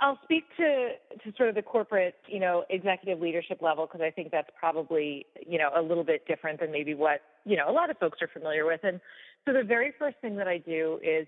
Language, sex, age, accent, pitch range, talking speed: English, female, 30-49, American, 160-200 Hz, 245 wpm